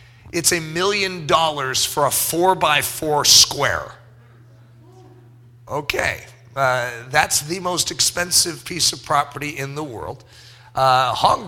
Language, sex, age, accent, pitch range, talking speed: English, male, 40-59, American, 120-170 Hz, 125 wpm